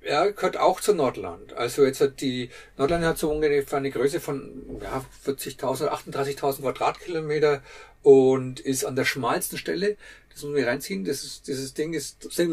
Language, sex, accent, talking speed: German, male, German, 180 wpm